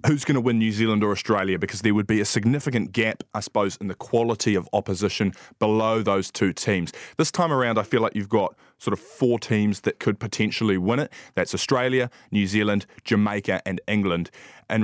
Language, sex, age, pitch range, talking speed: English, male, 20-39, 100-115 Hz, 205 wpm